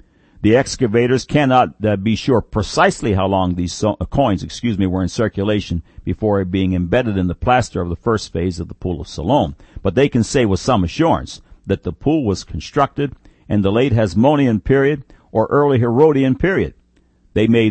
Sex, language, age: male, English, 60-79